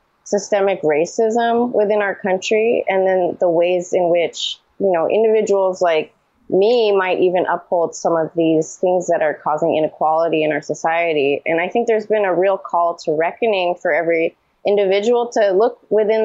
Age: 20-39